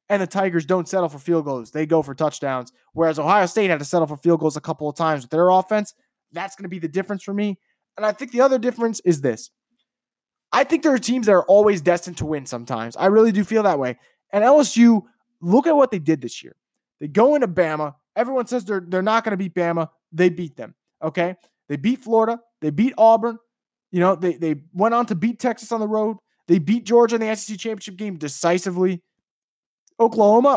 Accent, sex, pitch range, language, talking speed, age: American, male, 175-230 Hz, English, 230 wpm, 20-39